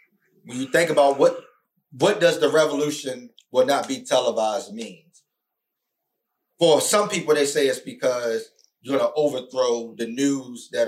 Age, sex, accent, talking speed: 30-49, male, American, 155 wpm